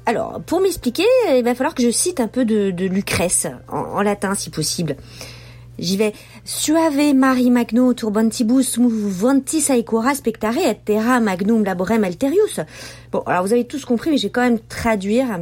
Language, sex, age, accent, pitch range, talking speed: French, female, 40-59, French, 185-250 Hz, 185 wpm